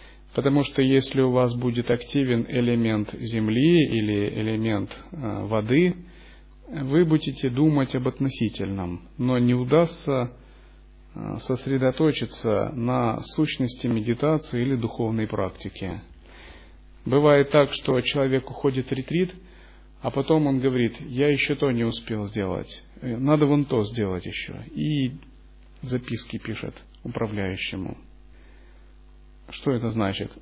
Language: Russian